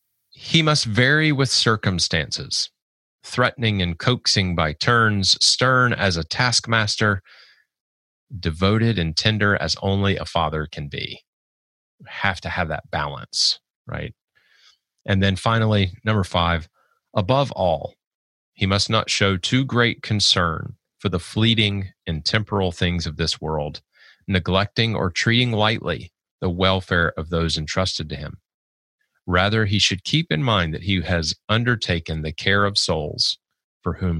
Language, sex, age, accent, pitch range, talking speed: English, male, 30-49, American, 85-110 Hz, 140 wpm